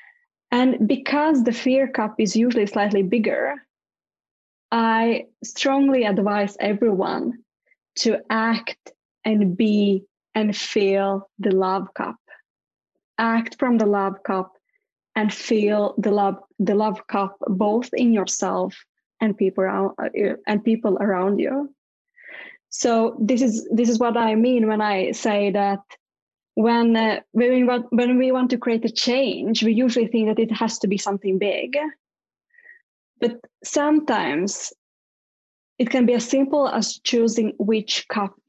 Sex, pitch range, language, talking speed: female, 205-245 Hz, English, 135 wpm